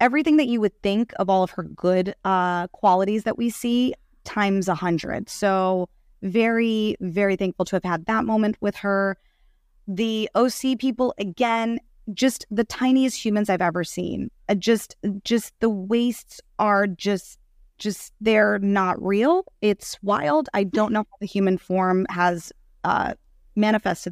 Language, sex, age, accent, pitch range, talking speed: English, female, 20-39, American, 180-220 Hz, 155 wpm